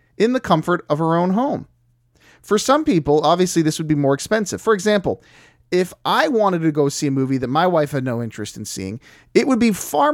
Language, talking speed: English, 225 wpm